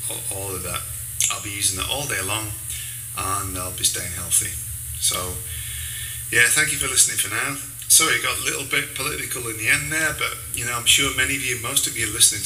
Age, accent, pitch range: 30-49, British, 100-115 Hz